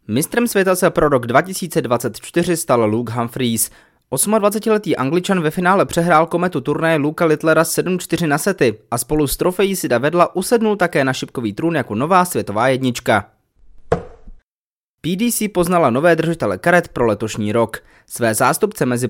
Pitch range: 125-170 Hz